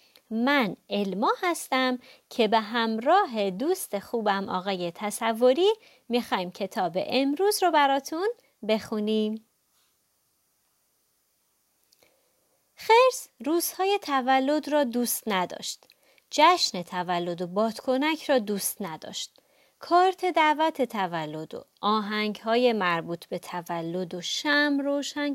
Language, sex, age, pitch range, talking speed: Persian, female, 30-49, 200-310 Hz, 95 wpm